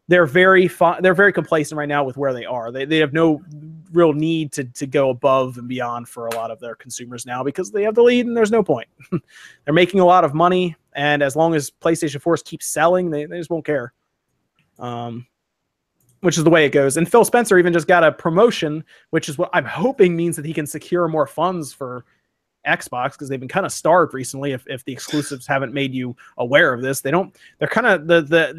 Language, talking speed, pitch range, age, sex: English, 235 wpm, 135-180 Hz, 30-49, male